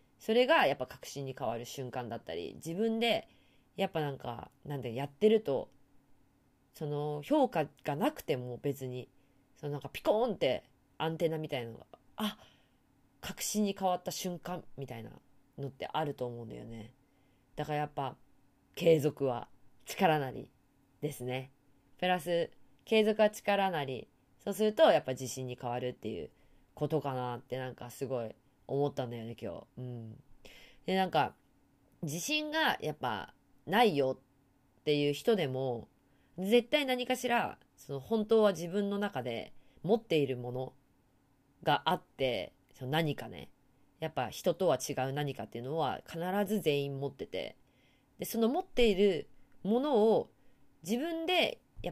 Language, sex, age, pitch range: Japanese, female, 20-39, 130-200 Hz